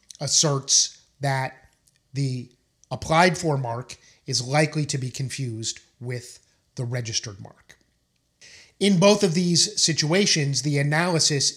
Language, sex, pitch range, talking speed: English, male, 125-160 Hz, 115 wpm